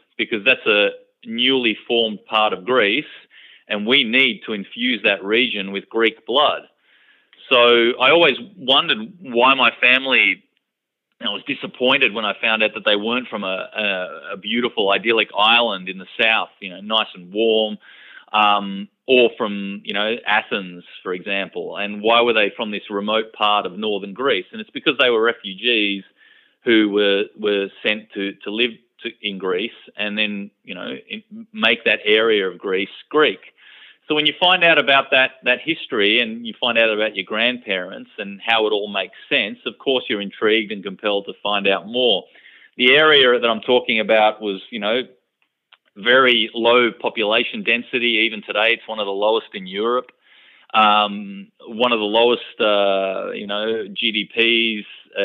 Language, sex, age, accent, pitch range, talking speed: English, male, 30-49, Australian, 105-130 Hz, 170 wpm